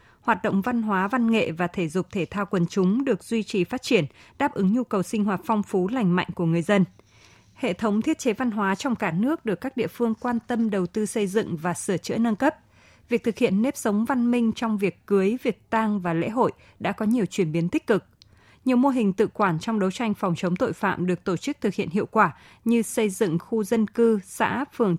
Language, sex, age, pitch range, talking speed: Vietnamese, female, 20-39, 180-230 Hz, 250 wpm